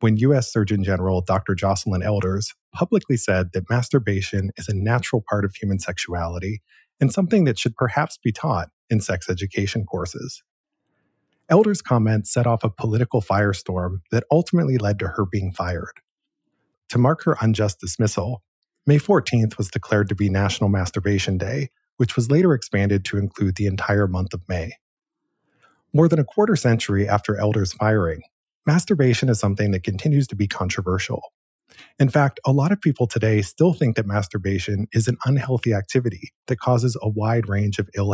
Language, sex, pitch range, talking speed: English, male, 100-130 Hz, 165 wpm